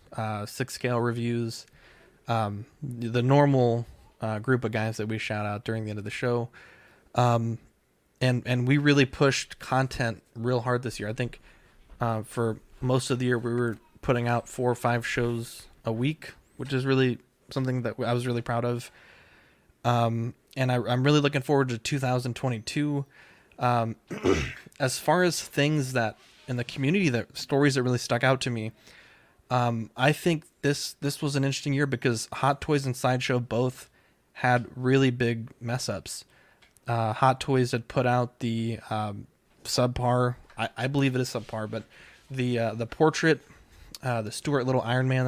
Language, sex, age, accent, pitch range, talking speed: English, male, 20-39, American, 115-135 Hz, 175 wpm